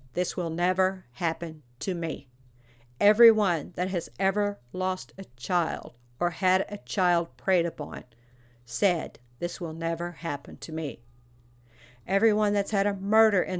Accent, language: American, English